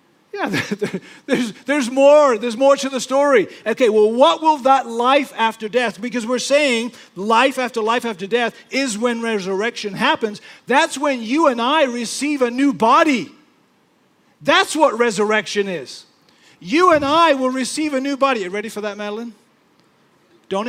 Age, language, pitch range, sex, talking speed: 40-59, English, 215-275 Hz, male, 165 wpm